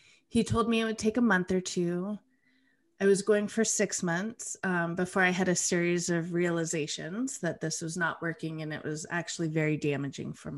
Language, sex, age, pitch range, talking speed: English, female, 30-49, 165-205 Hz, 205 wpm